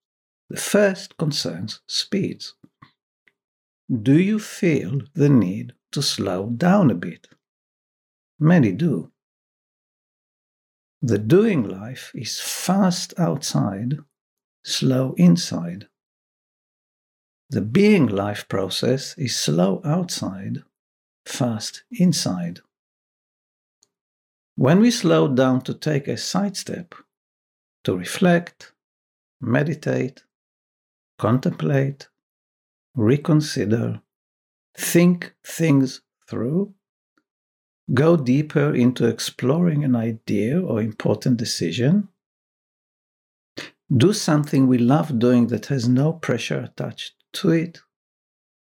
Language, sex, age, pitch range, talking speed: English, male, 60-79, 115-170 Hz, 85 wpm